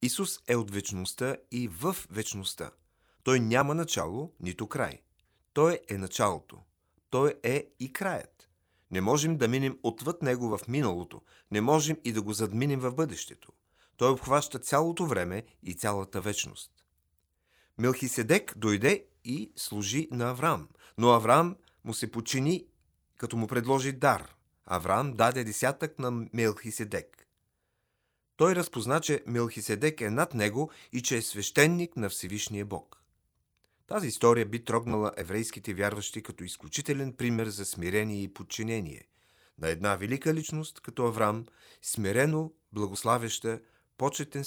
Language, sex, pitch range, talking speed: Bulgarian, male, 100-135 Hz, 130 wpm